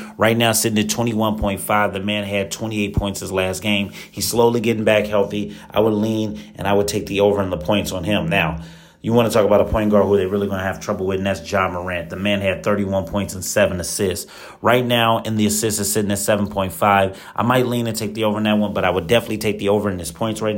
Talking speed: 265 wpm